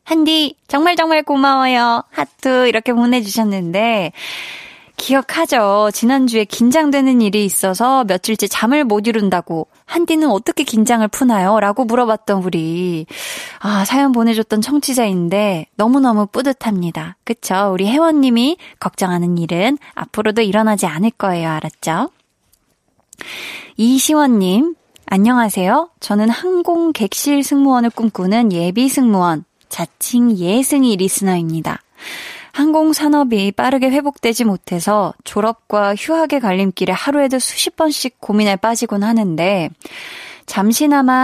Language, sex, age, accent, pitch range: Korean, female, 20-39, native, 200-270 Hz